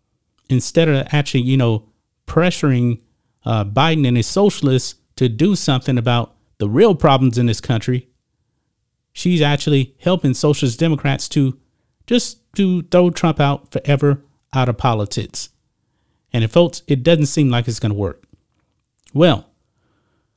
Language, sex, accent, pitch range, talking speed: English, male, American, 120-160 Hz, 140 wpm